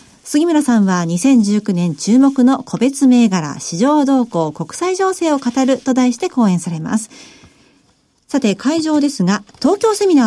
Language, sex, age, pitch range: Japanese, female, 50-69, 205-290 Hz